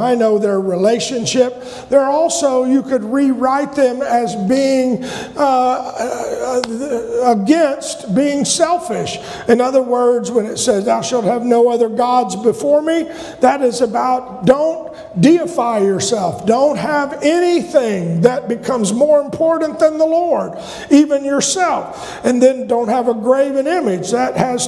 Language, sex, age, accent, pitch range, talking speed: English, male, 50-69, American, 235-305 Hz, 140 wpm